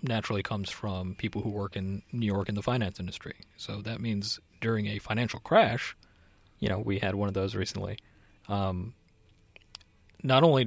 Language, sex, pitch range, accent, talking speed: English, male, 100-120 Hz, American, 175 wpm